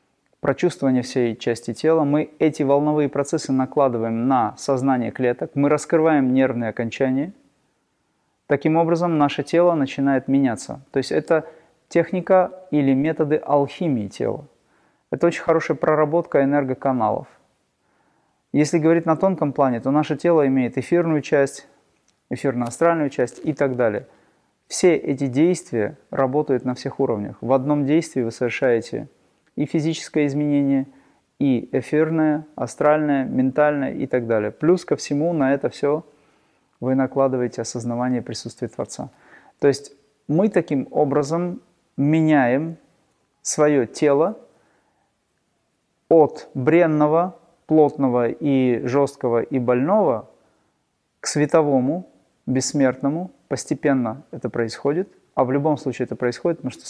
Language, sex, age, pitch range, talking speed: Russian, male, 30-49, 130-155 Hz, 120 wpm